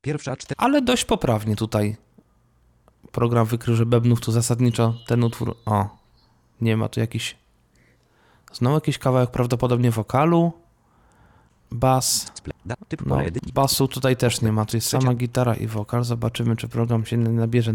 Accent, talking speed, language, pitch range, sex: native, 135 wpm, Polish, 115-140 Hz, male